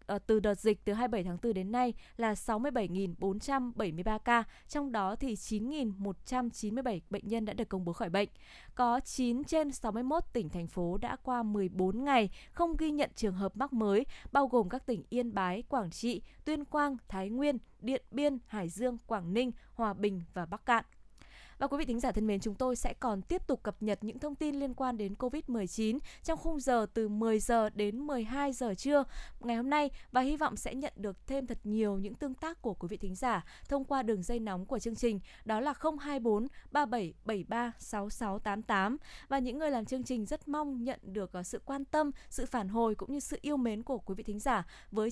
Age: 20-39